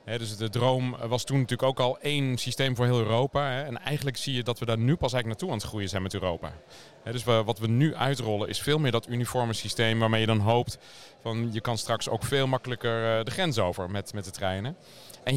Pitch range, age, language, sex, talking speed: 115-140 Hz, 40-59, Dutch, male, 235 wpm